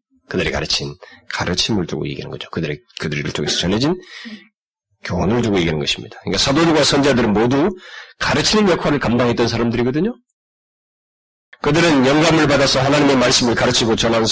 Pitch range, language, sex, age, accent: 115-155 Hz, Korean, male, 40-59, native